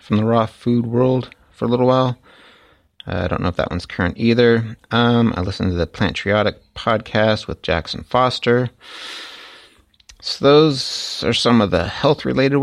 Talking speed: 170 wpm